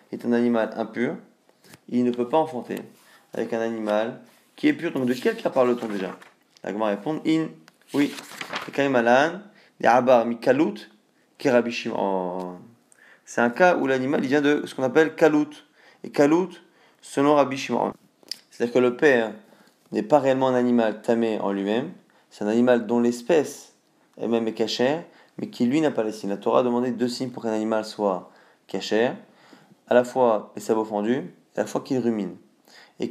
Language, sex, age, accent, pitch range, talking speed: French, male, 20-39, French, 115-145 Hz, 165 wpm